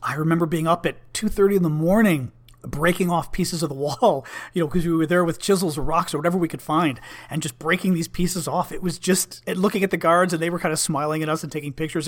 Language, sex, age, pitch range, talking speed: English, male, 40-59, 130-175 Hz, 275 wpm